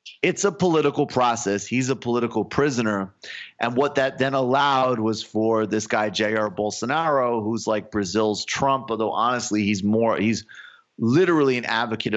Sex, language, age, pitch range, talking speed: male, English, 30-49, 95-115 Hz, 155 wpm